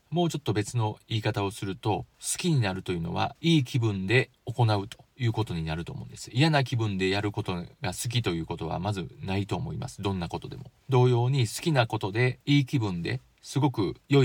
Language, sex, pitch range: Japanese, male, 100-130 Hz